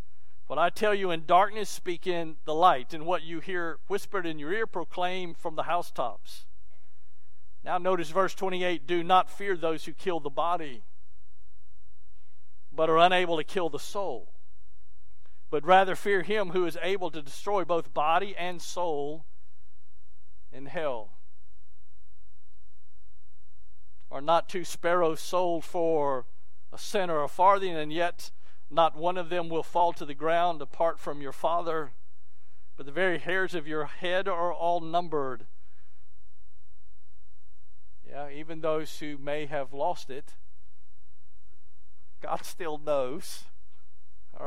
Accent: American